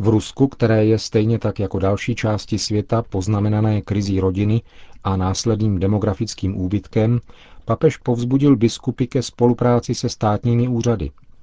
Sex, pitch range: male, 95-115 Hz